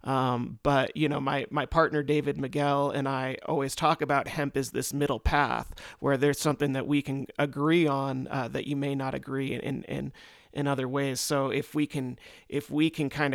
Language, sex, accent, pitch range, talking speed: English, male, American, 135-155 Hz, 205 wpm